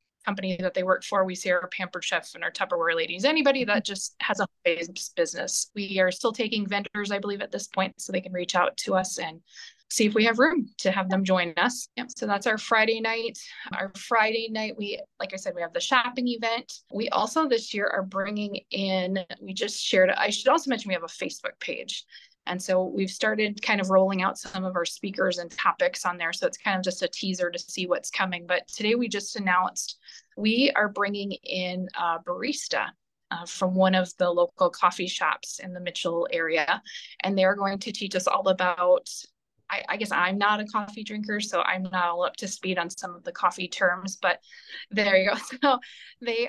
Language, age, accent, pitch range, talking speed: English, 20-39, American, 185-230 Hz, 220 wpm